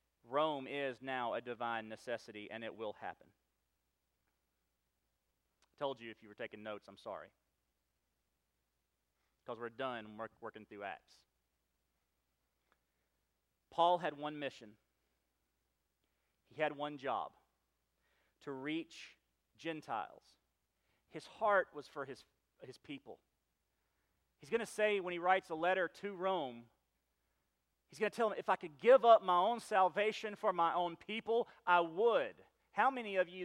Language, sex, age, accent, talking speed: English, male, 40-59, American, 140 wpm